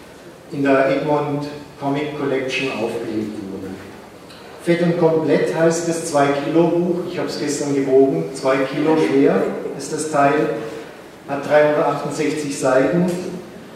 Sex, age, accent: male, 50-69, German